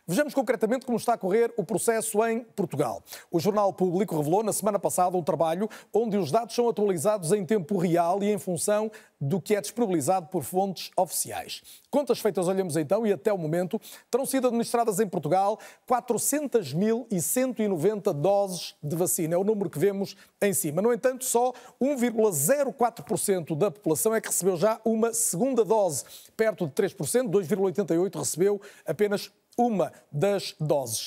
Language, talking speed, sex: Portuguese, 160 wpm, male